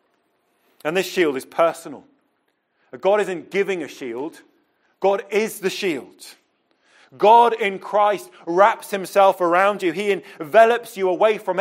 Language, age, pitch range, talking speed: English, 30-49, 155-200 Hz, 135 wpm